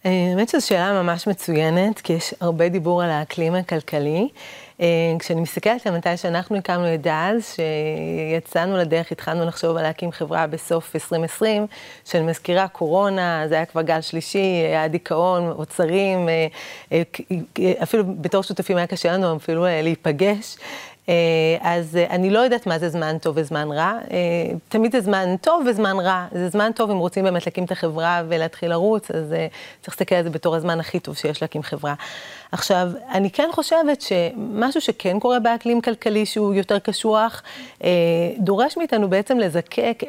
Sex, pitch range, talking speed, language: female, 165-210 Hz, 160 wpm, Hebrew